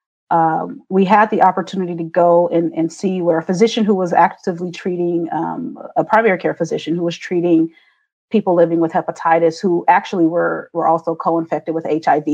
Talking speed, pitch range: 180 wpm, 175-200 Hz